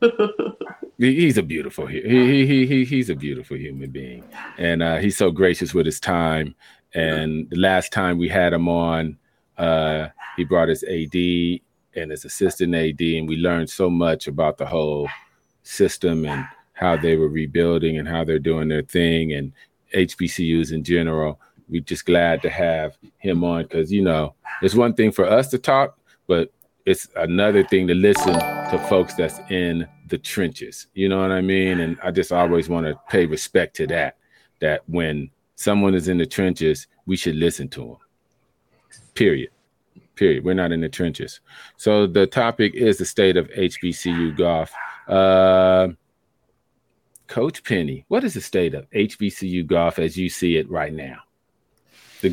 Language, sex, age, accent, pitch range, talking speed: English, male, 40-59, American, 80-95 Hz, 170 wpm